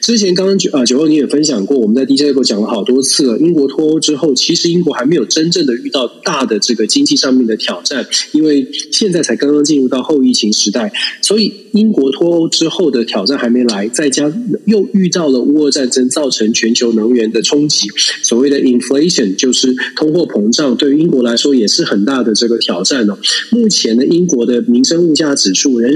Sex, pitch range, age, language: male, 130-190 Hz, 20-39, Chinese